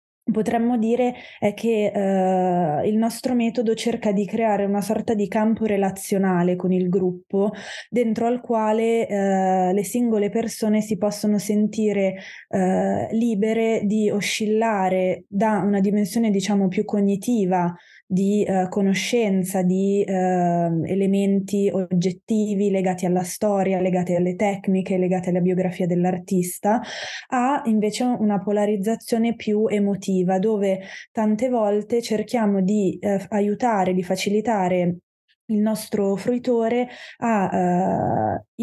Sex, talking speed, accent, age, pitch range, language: female, 115 wpm, native, 20-39, 190-215 Hz, Italian